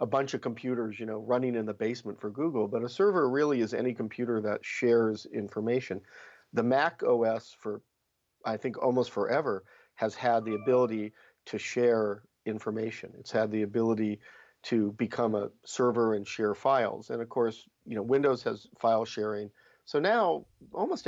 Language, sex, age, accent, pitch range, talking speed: English, male, 50-69, American, 110-125 Hz, 170 wpm